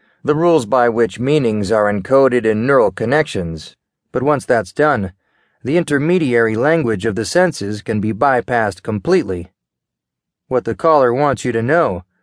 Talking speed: 150 wpm